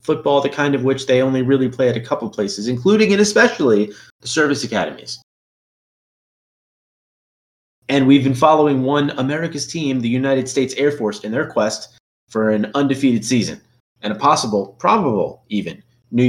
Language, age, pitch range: English, 30-49, 110-145 Hz